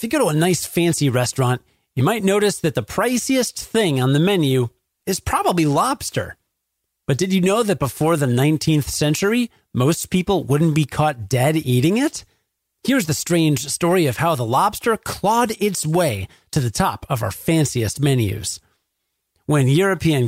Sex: male